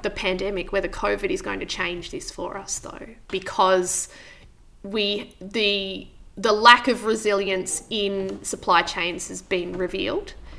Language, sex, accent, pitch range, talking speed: English, female, Australian, 190-235 Hz, 140 wpm